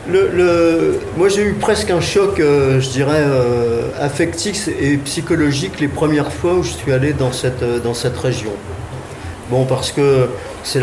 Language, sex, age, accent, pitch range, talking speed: French, male, 50-69, French, 125-160 Hz, 175 wpm